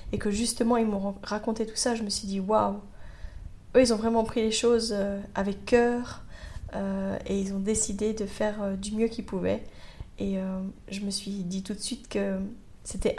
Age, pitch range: 20-39, 195-220 Hz